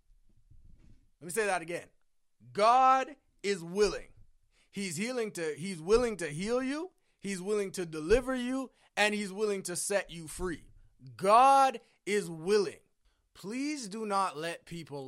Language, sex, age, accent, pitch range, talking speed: English, male, 30-49, American, 165-245 Hz, 145 wpm